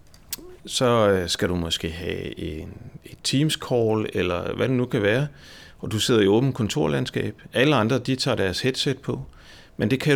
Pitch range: 95-125 Hz